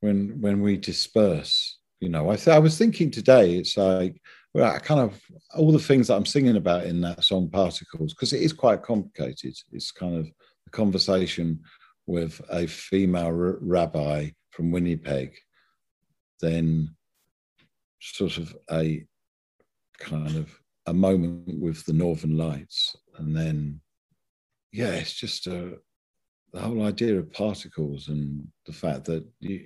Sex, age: male, 50-69